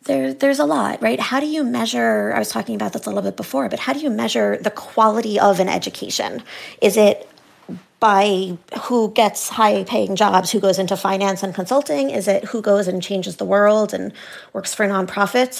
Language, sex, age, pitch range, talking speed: English, female, 30-49, 195-245 Hz, 210 wpm